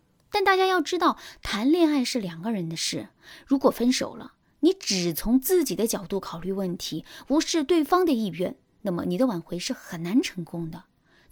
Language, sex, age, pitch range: Chinese, female, 20-39, 195-315 Hz